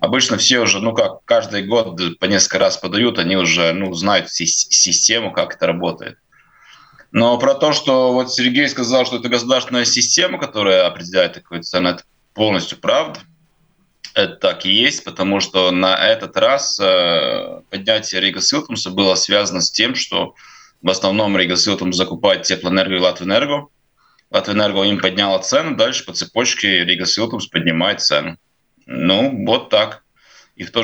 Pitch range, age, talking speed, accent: 95-125 Hz, 20-39, 155 wpm, native